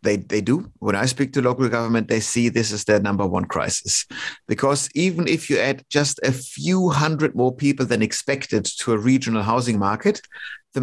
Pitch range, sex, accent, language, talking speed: 115-140 Hz, male, German, English, 200 wpm